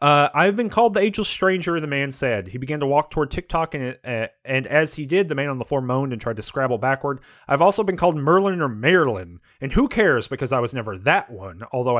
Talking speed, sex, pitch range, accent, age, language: 245 wpm, male, 125-165 Hz, American, 30-49, English